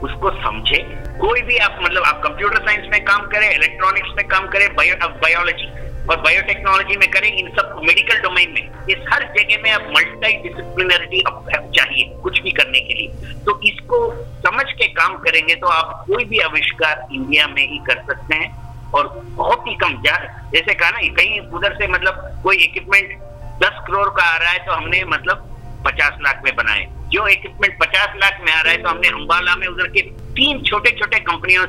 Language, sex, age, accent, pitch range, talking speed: English, male, 50-69, Indian, 165-210 Hz, 180 wpm